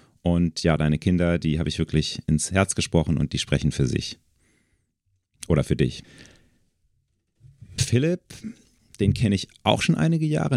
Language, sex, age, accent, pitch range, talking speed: German, male, 40-59, German, 80-105 Hz, 155 wpm